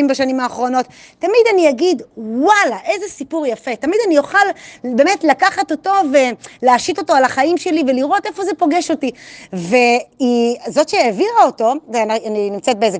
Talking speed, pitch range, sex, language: 150 wpm, 235-330 Hz, female, Hebrew